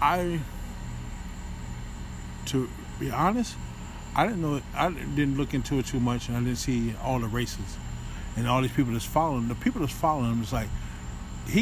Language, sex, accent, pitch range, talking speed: English, male, American, 115-150 Hz, 180 wpm